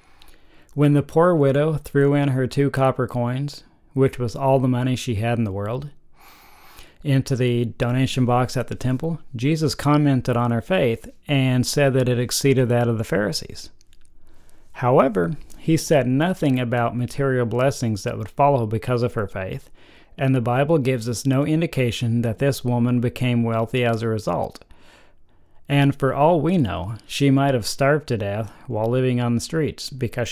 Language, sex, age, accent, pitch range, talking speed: English, male, 40-59, American, 115-135 Hz, 170 wpm